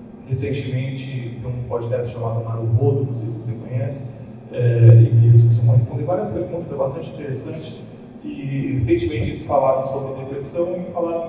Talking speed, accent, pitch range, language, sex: 160 wpm, Brazilian, 130-185 Hz, Portuguese, male